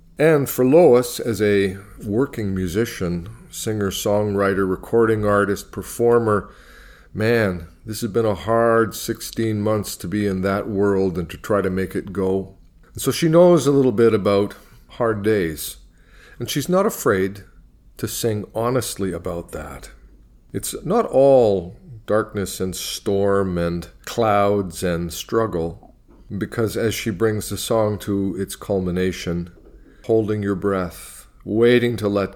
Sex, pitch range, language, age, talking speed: male, 85-110 Hz, English, 40-59, 140 wpm